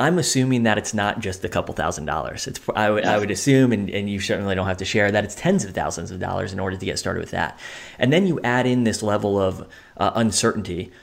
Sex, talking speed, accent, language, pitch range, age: male, 250 wpm, American, English, 95-115 Hz, 20-39